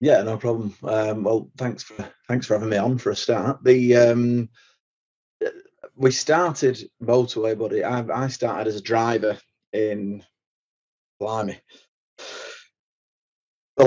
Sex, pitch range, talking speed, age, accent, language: male, 105-120 Hz, 130 wpm, 20-39, British, English